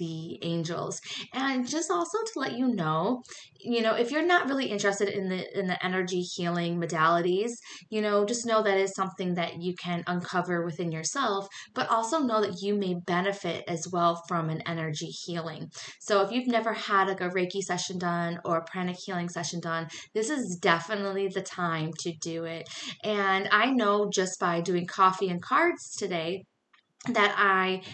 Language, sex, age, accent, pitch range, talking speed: English, female, 20-39, American, 175-205 Hz, 185 wpm